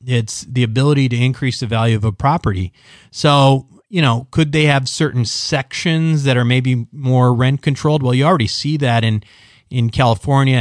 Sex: male